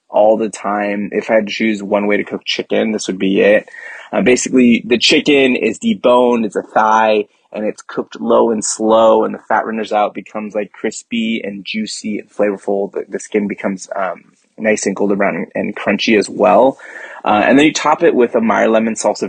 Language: English